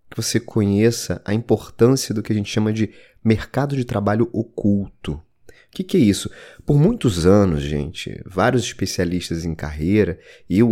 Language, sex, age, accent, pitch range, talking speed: Portuguese, male, 20-39, Brazilian, 95-130 Hz, 155 wpm